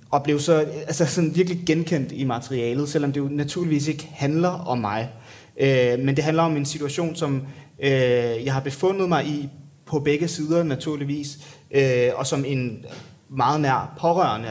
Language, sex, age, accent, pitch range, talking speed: English, male, 30-49, Danish, 130-155 Hz, 150 wpm